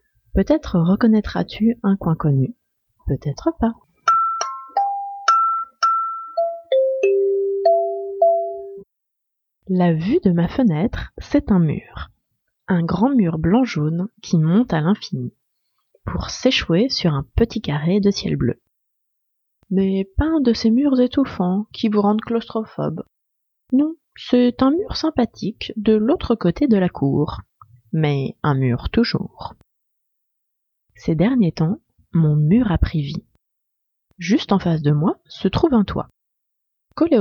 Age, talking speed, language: 30-49, 125 wpm, French